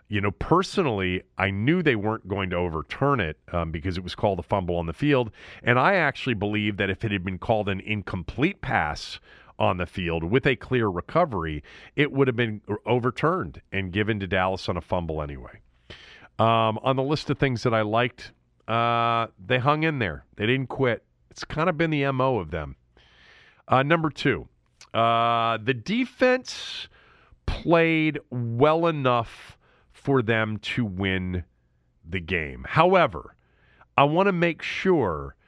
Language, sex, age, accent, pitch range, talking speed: English, male, 40-59, American, 90-130 Hz, 170 wpm